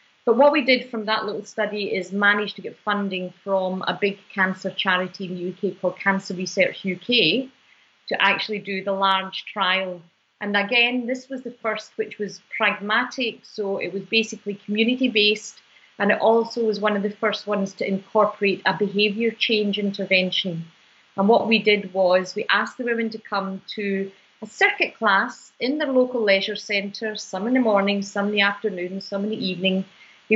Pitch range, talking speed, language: 190-220 Hz, 185 wpm, English